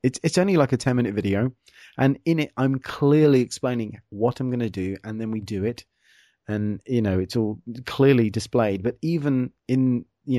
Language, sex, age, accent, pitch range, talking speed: English, male, 30-49, British, 105-130 Hz, 200 wpm